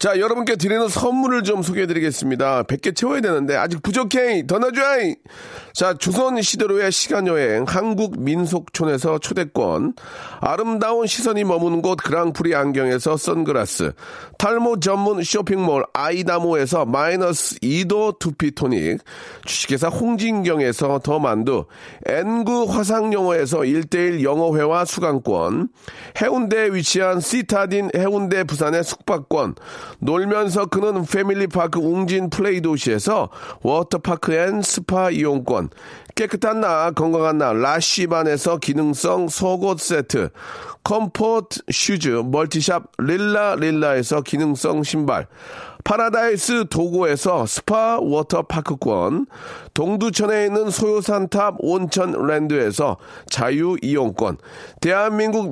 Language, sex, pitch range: Korean, male, 160-215 Hz